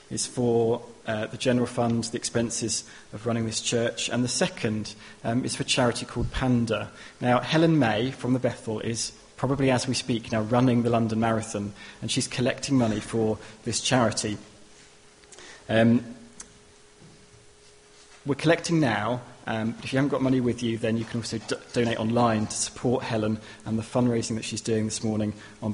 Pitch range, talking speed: 110-125 Hz, 175 wpm